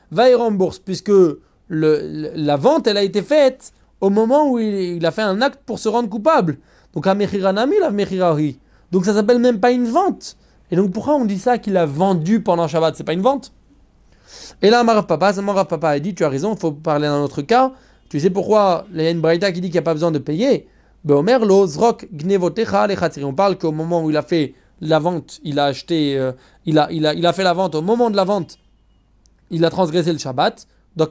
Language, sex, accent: French, male, French